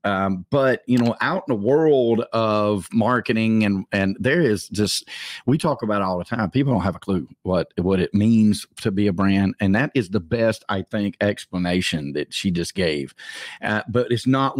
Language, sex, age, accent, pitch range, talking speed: English, male, 40-59, American, 95-120 Hz, 210 wpm